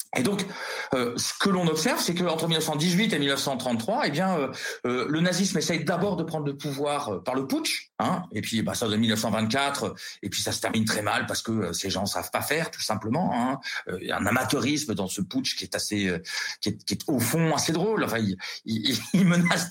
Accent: French